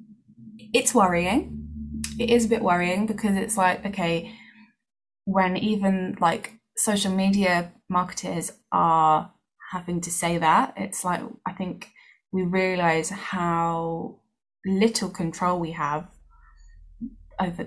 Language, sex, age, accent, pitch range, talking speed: English, female, 10-29, British, 175-230 Hz, 115 wpm